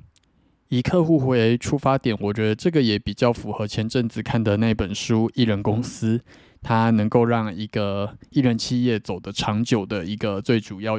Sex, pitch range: male, 105-120 Hz